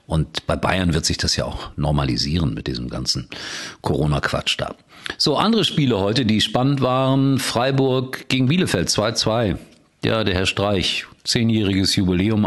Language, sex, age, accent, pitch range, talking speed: German, male, 50-69, German, 85-115 Hz, 150 wpm